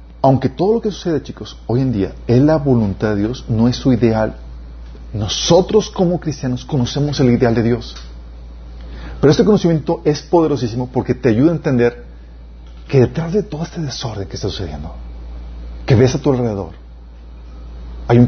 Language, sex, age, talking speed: Spanish, male, 40-59, 170 wpm